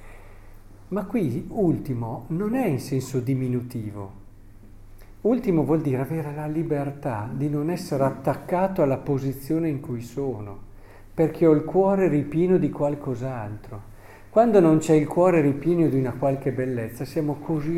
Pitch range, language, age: 110-155 Hz, Italian, 50-69